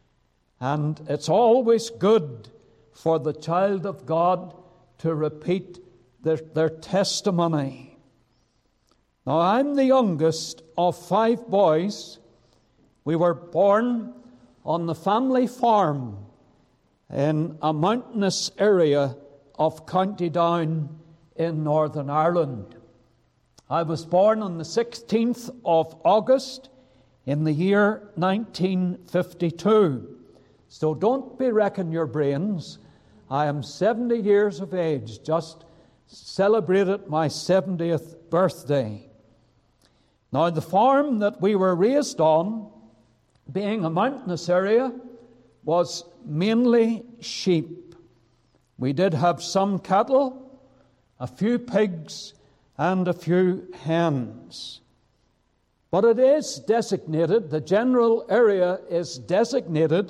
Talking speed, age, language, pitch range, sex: 105 wpm, 60-79, English, 150-205 Hz, male